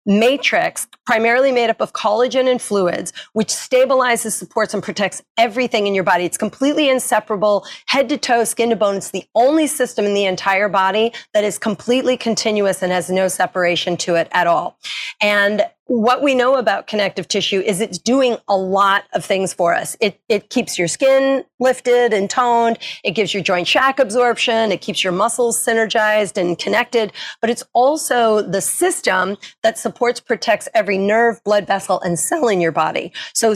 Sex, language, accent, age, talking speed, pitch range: female, English, American, 40-59, 180 wpm, 185-230 Hz